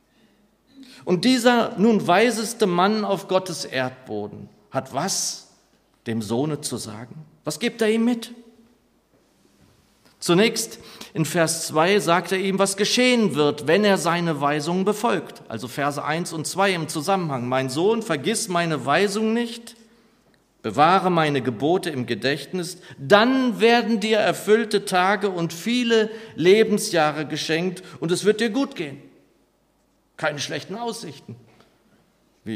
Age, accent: 50-69, German